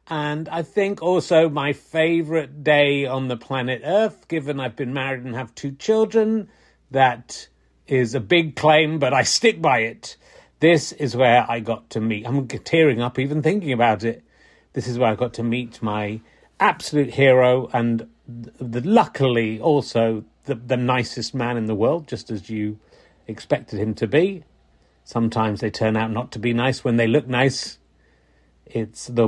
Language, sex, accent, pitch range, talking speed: English, male, British, 115-150 Hz, 170 wpm